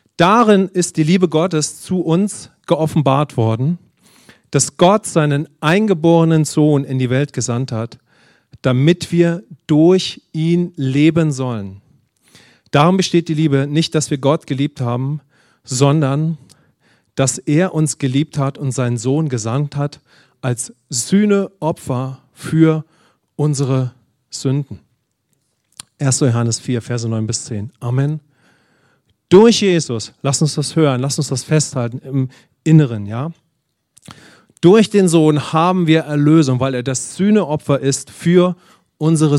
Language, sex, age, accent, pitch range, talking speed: English, male, 40-59, German, 135-170 Hz, 125 wpm